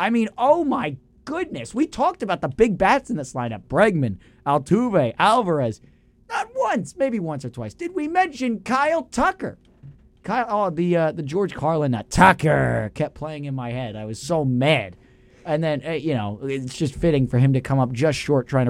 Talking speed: 195 wpm